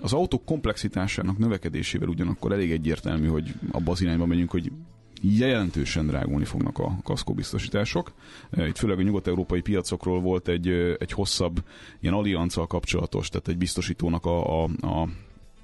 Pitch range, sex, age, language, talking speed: 85-100 Hz, male, 30-49, Hungarian, 140 wpm